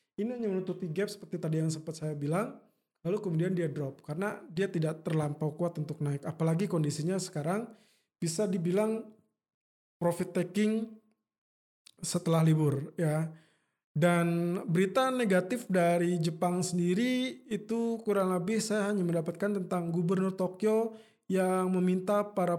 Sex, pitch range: male, 165-200 Hz